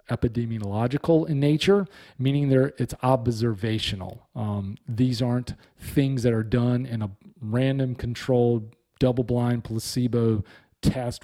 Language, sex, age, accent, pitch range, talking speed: English, male, 40-59, American, 115-145 Hz, 105 wpm